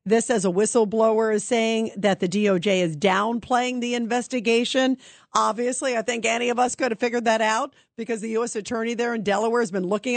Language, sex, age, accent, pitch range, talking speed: English, female, 50-69, American, 225-290 Hz, 200 wpm